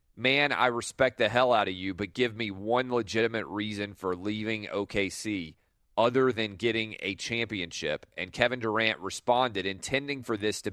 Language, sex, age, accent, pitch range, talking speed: English, male, 30-49, American, 100-120 Hz, 170 wpm